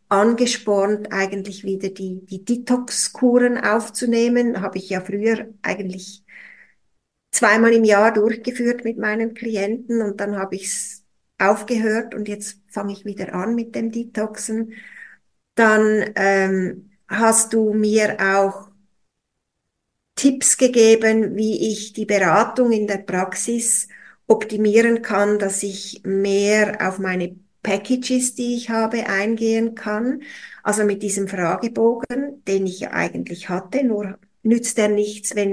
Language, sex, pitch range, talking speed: German, female, 195-225 Hz, 130 wpm